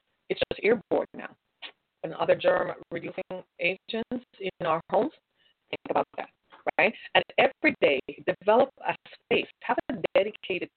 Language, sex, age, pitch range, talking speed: English, female, 30-49, 175-250 Hz, 135 wpm